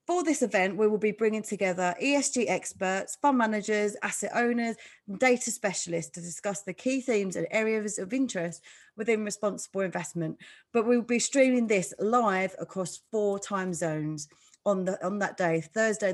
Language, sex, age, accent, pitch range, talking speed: English, female, 30-49, British, 180-230 Hz, 165 wpm